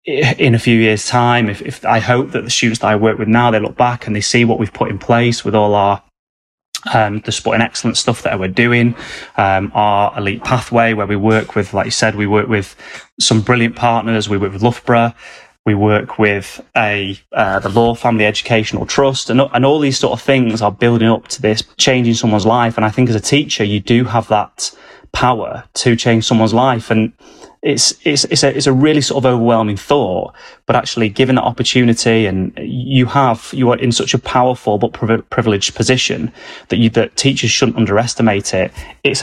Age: 30-49